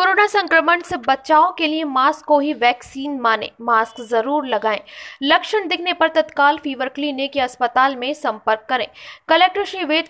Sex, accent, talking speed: female, native, 165 wpm